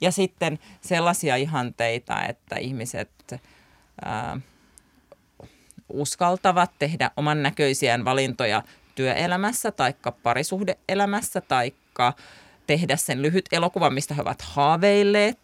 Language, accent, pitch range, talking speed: Finnish, native, 140-180 Hz, 95 wpm